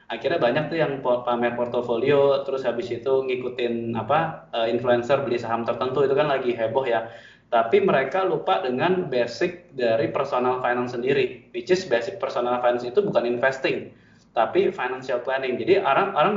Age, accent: 20-39, native